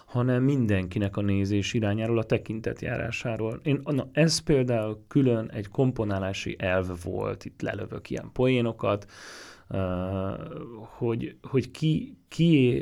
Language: Hungarian